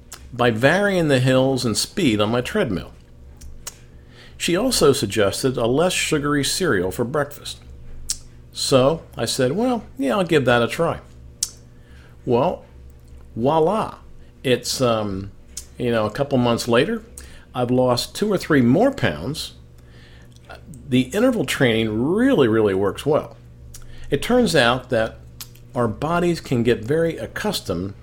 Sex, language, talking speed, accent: male, English, 135 wpm, American